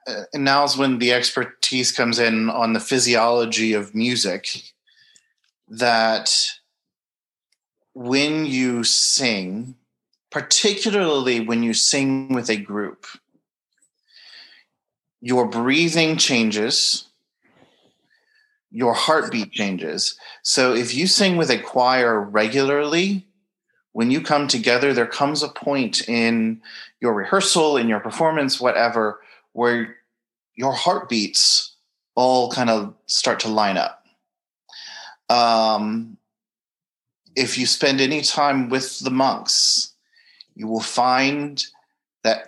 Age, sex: 30-49, male